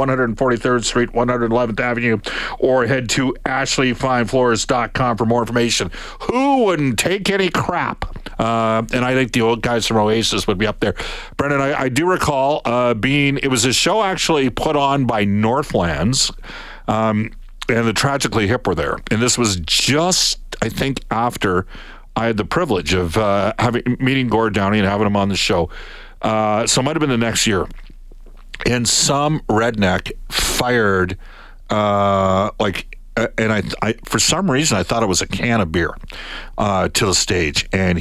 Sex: male